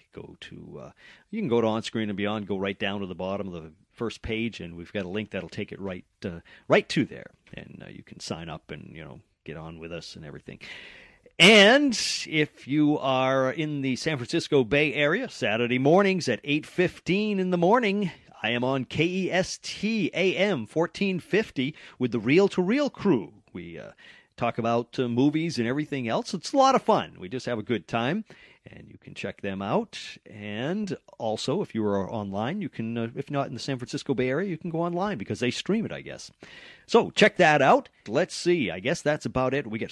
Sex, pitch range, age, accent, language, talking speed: male, 110-165 Hz, 40-59, American, English, 215 wpm